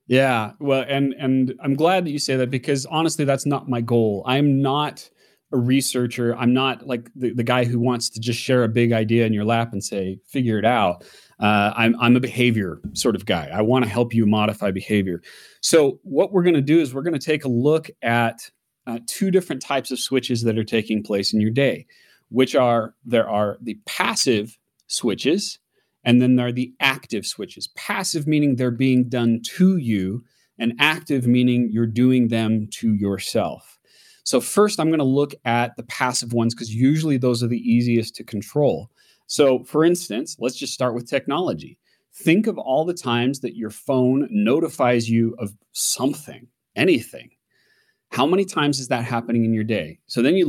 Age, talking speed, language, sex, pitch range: 30-49, 195 wpm, English, male, 115-140 Hz